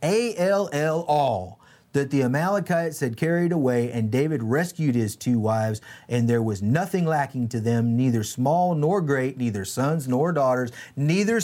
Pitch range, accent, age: 120-190 Hz, American, 30-49